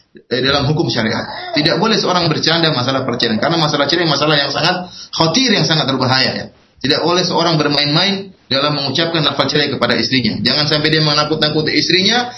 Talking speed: 170 wpm